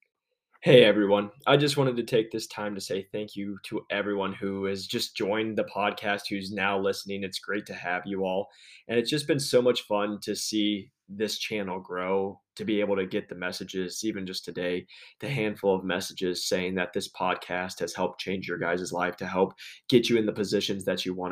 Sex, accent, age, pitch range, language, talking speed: male, American, 20-39, 90-105 Hz, English, 215 wpm